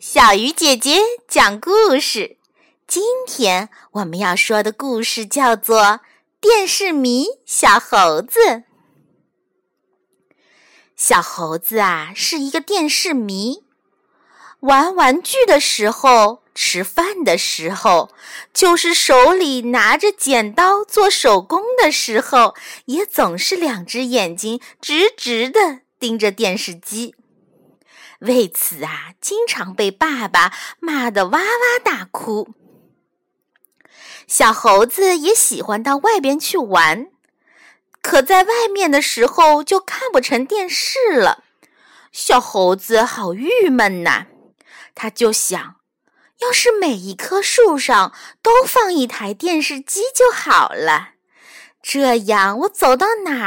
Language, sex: Chinese, female